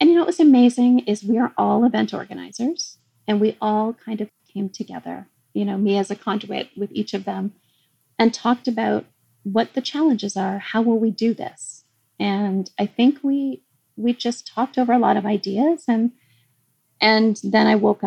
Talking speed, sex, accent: 195 wpm, female, American